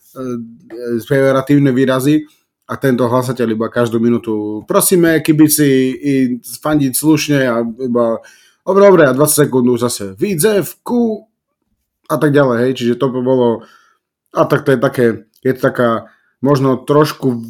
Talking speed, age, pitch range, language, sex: 135 wpm, 30-49, 120-140 Hz, Slovak, male